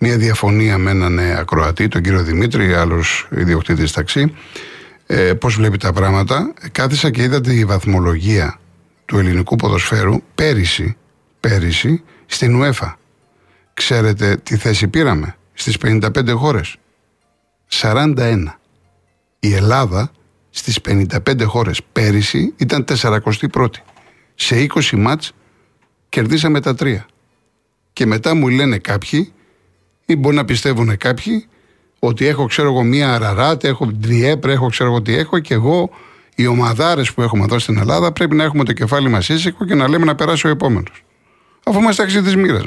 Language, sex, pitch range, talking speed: Greek, male, 105-150 Hz, 140 wpm